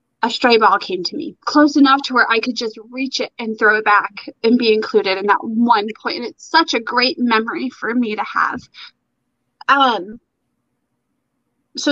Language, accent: English, American